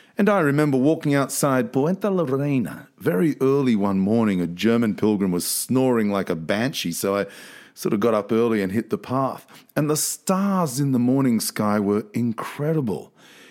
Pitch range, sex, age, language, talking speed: 105-155 Hz, male, 40-59, English, 175 wpm